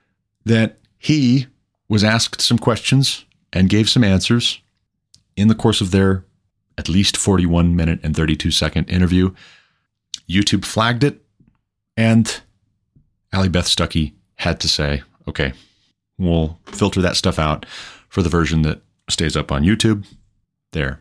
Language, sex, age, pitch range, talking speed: English, male, 30-49, 85-105 Hz, 135 wpm